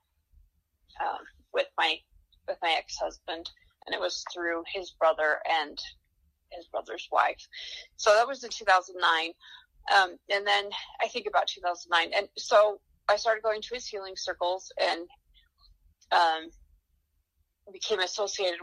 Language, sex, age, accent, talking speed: English, female, 30-49, American, 130 wpm